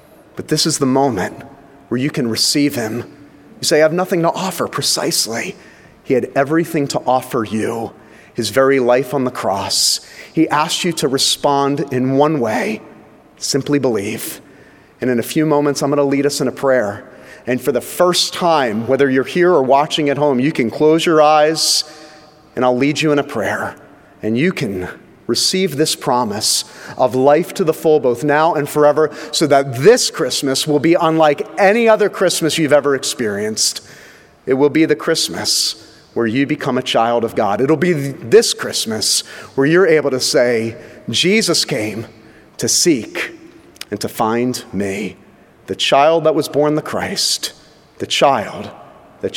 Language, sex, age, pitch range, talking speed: English, male, 30-49, 125-155 Hz, 175 wpm